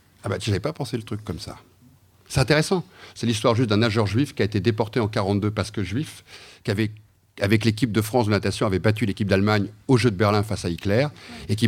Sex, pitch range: male, 100-130 Hz